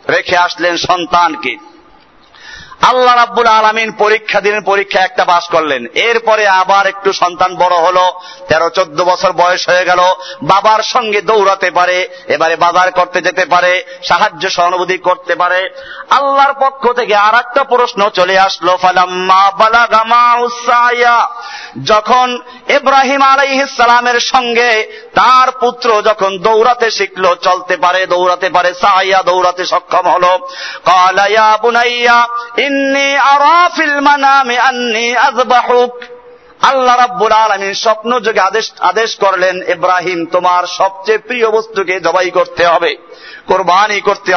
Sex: male